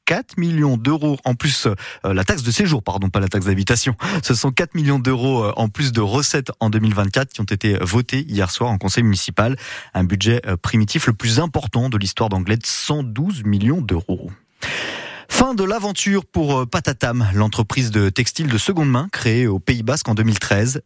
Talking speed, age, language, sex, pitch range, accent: 180 wpm, 30-49, French, male, 110-140 Hz, French